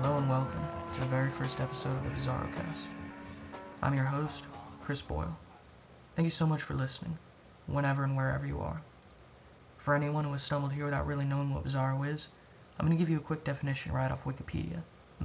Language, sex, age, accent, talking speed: English, male, 20-39, American, 205 wpm